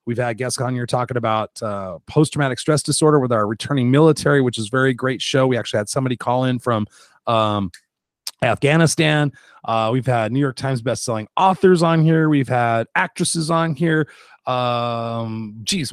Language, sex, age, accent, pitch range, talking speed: English, male, 30-49, American, 120-155 Hz, 175 wpm